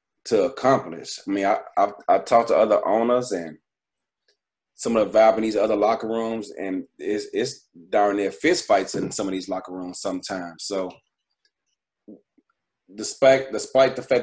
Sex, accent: male, American